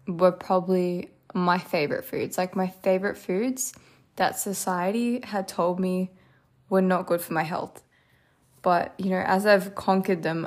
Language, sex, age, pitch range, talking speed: English, female, 10-29, 165-215 Hz, 155 wpm